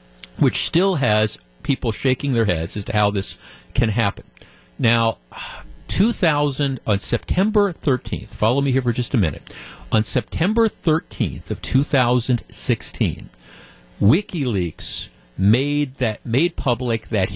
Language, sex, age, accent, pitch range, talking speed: English, male, 50-69, American, 105-145 Hz, 135 wpm